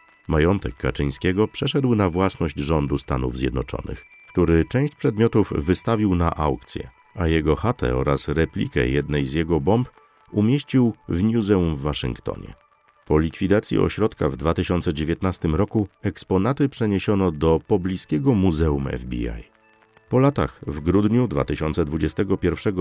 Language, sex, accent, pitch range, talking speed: Polish, male, native, 80-105 Hz, 120 wpm